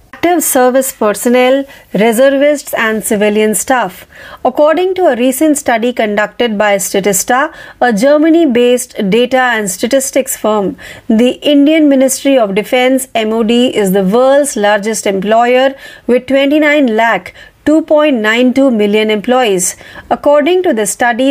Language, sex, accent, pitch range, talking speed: Marathi, female, native, 215-275 Hz, 120 wpm